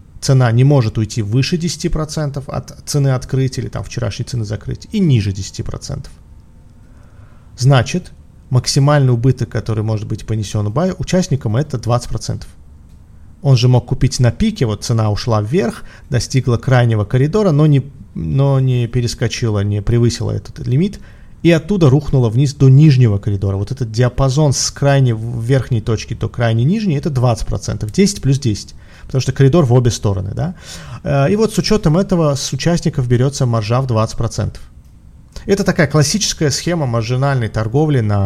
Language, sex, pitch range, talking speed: Russian, male, 110-140 Hz, 150 wpm